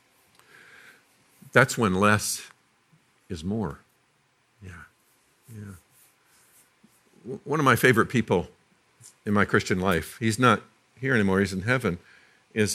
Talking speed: 115 wpm